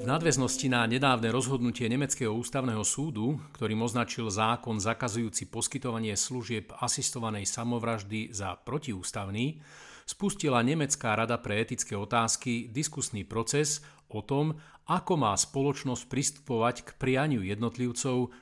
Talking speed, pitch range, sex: 115 wpm, 115-140 Hz, male